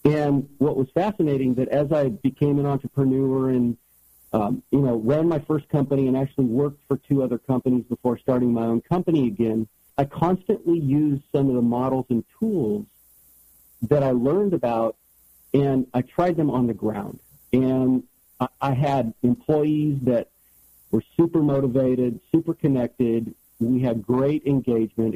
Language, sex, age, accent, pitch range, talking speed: English, male, 50-69, American, 120-145 Hz, 155 wpm